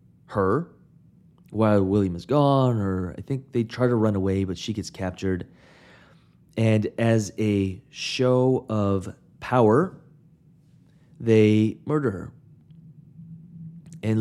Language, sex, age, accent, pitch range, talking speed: English, male, 30-49, American, 100-160 Hz, 115 wpm